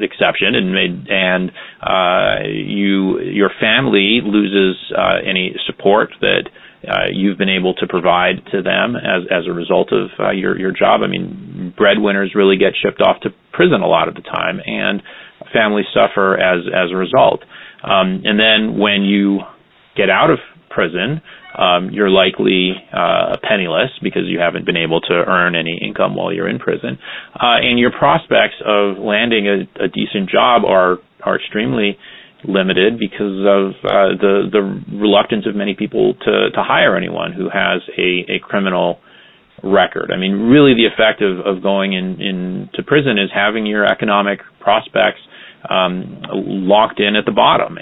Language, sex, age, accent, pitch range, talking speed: English, male, 30-49, American, 95-105 Hz, 165 wpm